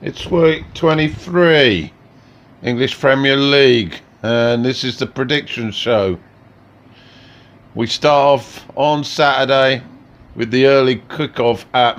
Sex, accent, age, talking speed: male, British, 50-69, 115 wpm